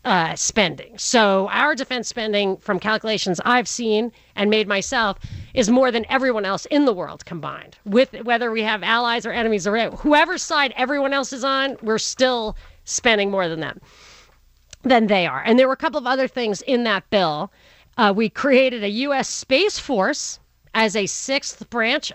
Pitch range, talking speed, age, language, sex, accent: 205-265 Hz, 180 wpm, 40-59, English, female, American